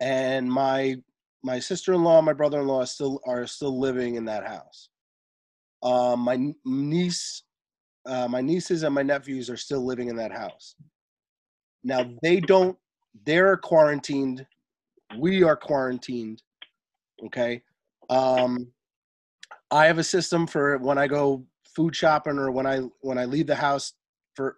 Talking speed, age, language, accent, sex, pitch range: 150 wpm, 30-49, English, American, male, 125-165 Hz